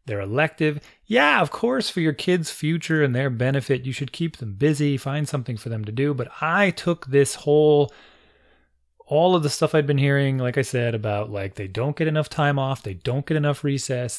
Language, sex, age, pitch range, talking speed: English, male, 30-49, 125-165 Hz, 215 wpm